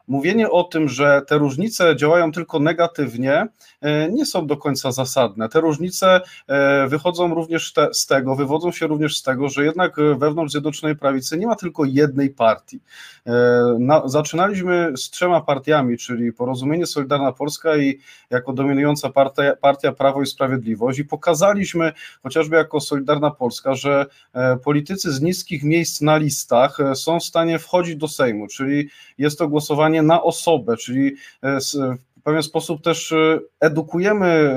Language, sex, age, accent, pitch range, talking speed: Polish, male, 30-49, native, 135-160 Hz, 140 wpm